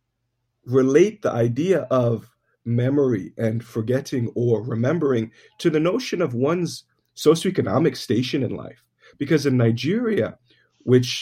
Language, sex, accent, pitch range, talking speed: English, male, American, 120-145 Hz, 120 wpm